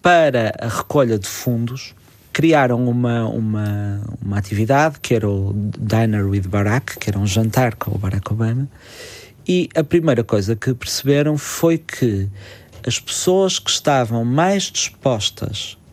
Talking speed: 145 wpm